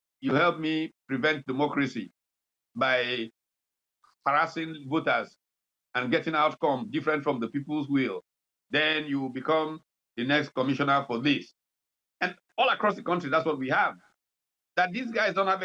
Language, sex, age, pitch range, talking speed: English, male, 50-69, 130-180 Hz, 145 wpm